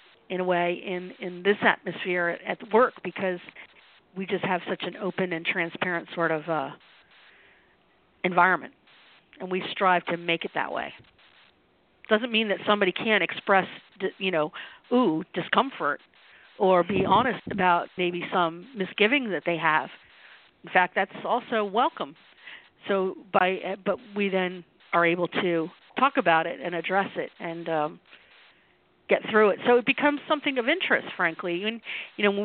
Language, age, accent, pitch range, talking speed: English, 50-69, American, 175-210 Hz, 155 wpm